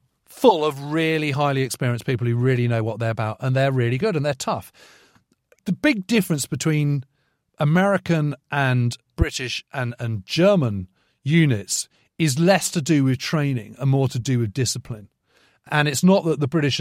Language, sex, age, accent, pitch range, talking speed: English, male, 40-59, British, 120-160 Hz, 170 wpm